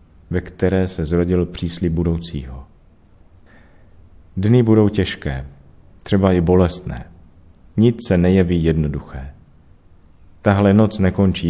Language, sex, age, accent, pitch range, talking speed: Czech, male, 40-59, native, 85-95 Hz, 100 wpm